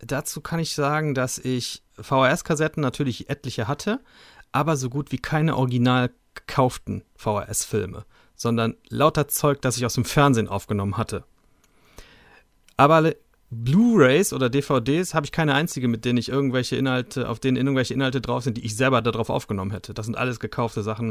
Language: German